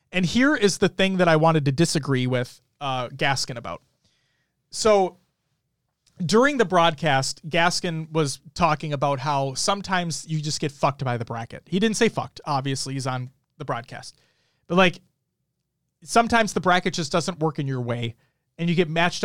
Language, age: English, 30-49